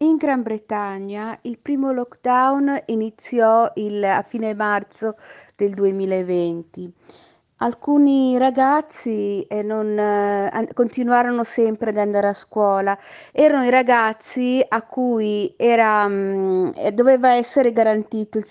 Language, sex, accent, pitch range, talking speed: Italian, female, native, 210-255 Hz, 95 wpm